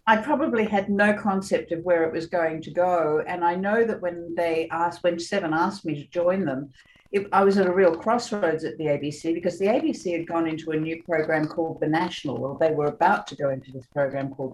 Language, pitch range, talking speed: English, 150-180 Hz, 240 wpm